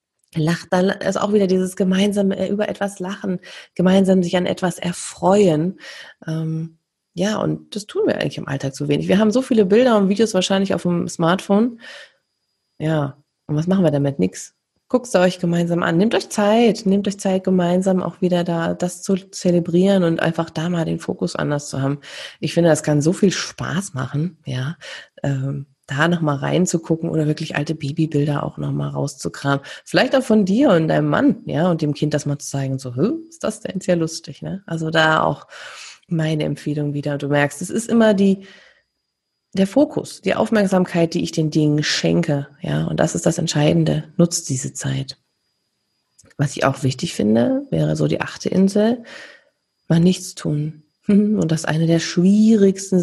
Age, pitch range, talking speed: 20-39, 150-195 Hz, 185 wpm